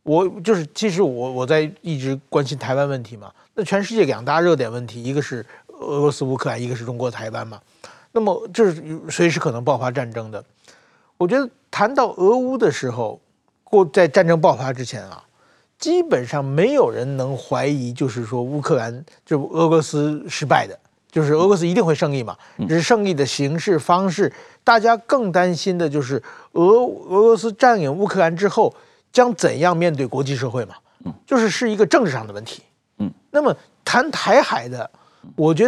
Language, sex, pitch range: Chinese, male, 140-205 Hz